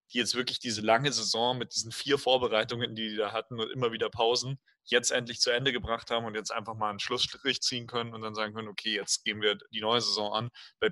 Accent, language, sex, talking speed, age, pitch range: German, German, male, 245 wpm, 30-49, 110-125 Hz